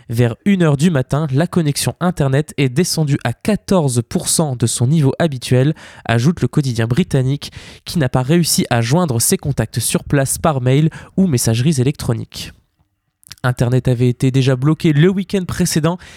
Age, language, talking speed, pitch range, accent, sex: 20-39, French, 155 wpm, 130-170 Hz, French, male